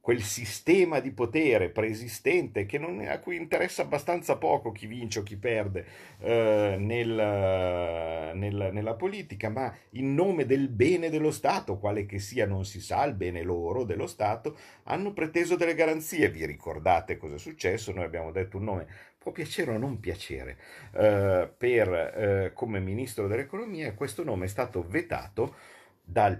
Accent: native